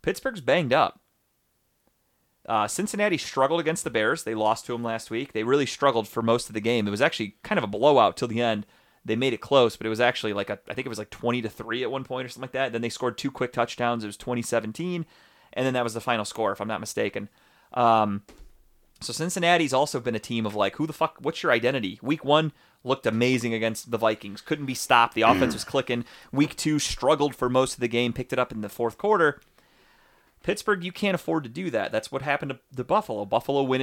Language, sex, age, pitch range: English, male, 30-49, 115-150 Hz